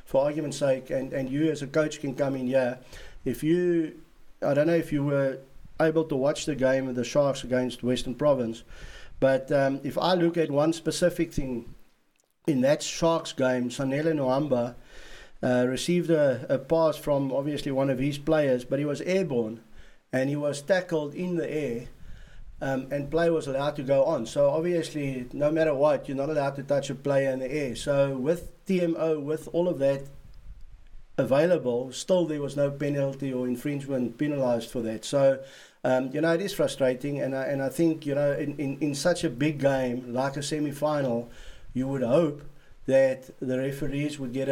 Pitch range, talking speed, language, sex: 130-155 Hz, 190 wpm, English, male